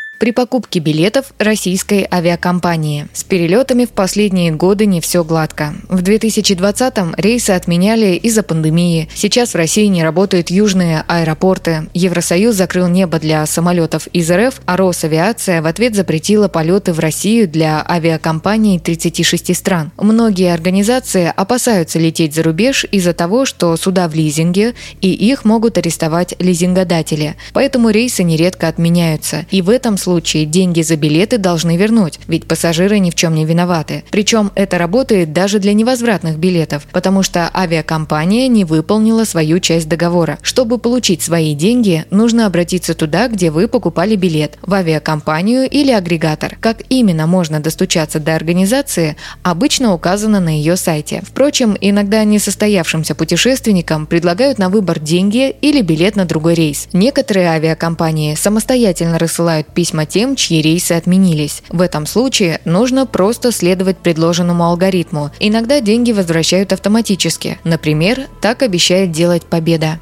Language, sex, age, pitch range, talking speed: Russian, female, 20-39, 165-210 Hz, 140 wpm